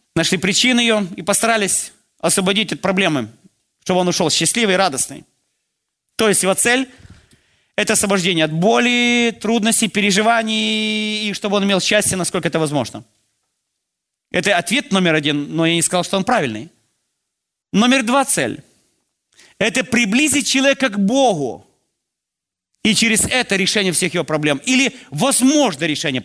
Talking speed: 140 wpm